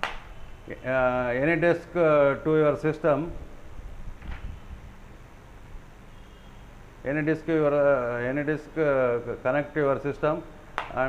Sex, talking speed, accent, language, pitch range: male, 90 wpm, native, Kannada, 110-145 Hz